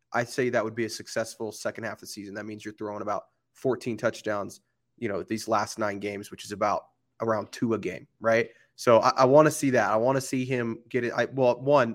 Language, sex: English, male